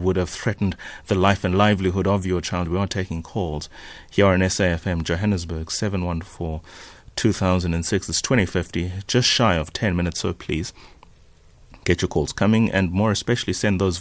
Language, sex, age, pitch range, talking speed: English, male, 30-49, 90-105 Hz, 155 wpm